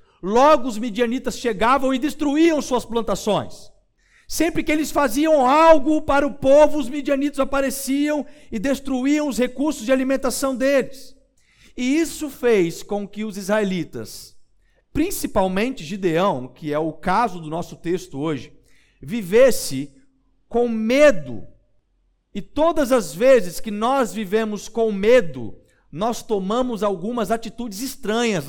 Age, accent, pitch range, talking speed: 50-69, Brazilian, 195-265 Hz, 125 wpm